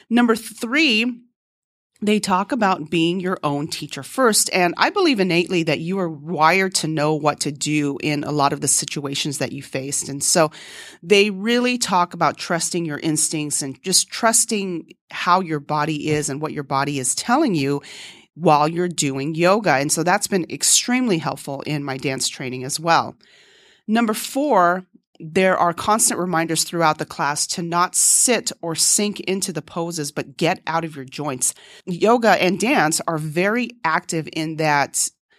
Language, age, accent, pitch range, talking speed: English, 30-49, American, 150-195 Hz, 175 wpm